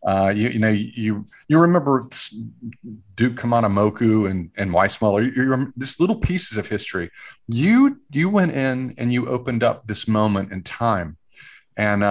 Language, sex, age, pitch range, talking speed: English, male, 40-59, 100-130 Hz, 155 wpm